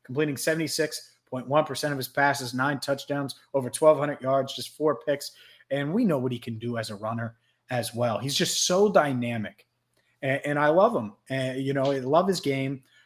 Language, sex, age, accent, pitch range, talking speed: English, male, 30-49, American, 120-150 Hz, 190 wpm